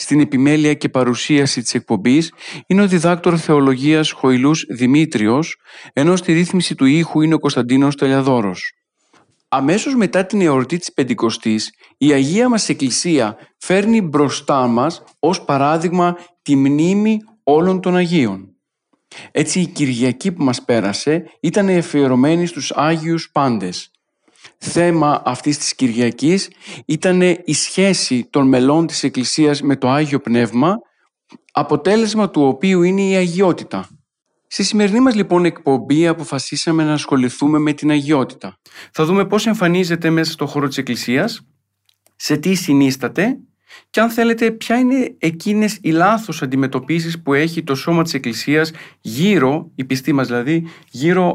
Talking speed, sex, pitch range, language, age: 135 wpm, male, 135-180 Hz, Greek, 50-69